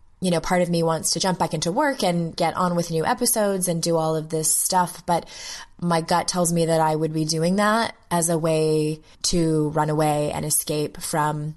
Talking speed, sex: 225 wpm, female